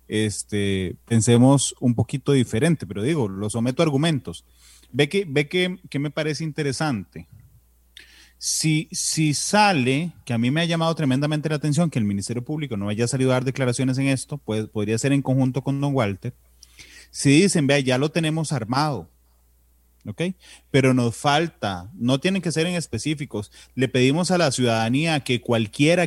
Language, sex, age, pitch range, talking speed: Spanish, male, 30-49, 115-160 Hz, 175 wpm